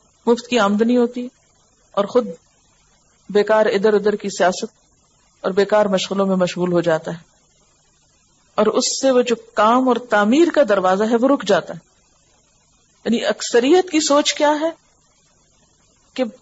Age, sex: 50-69, female